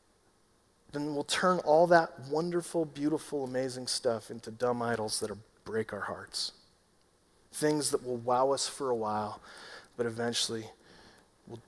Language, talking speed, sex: English, 145 wpm, male